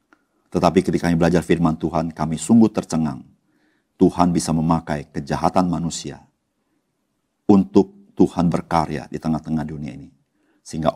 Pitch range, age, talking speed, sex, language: 75-85 Hz, 50-69, 120 wpm, male, Indonesian